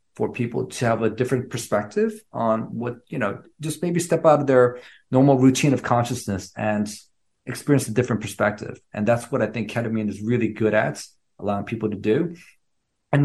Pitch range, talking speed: 115-145 Hz, 185 wpm